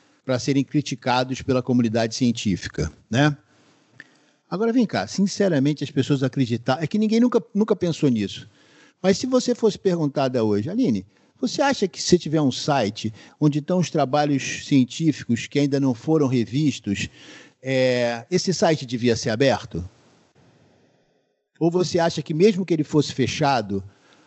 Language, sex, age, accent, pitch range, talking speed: Portuguese, male, 50-69, Brazilian, 125-195 Hz, 150 wpm